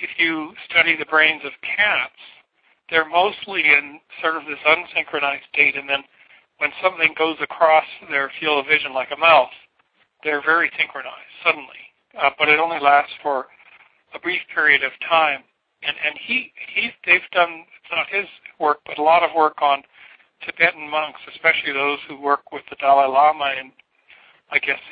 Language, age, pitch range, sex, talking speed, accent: English, 60-79, 145-165 Hz, male, 170 wpm, American